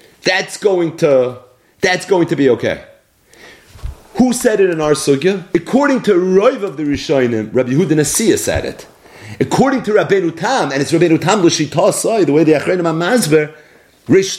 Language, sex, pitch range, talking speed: English, male, 155-215 Hz, 165 wpm